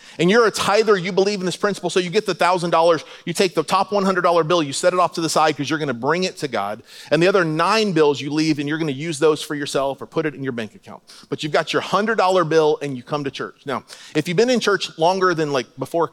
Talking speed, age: 285 wpm, 30-49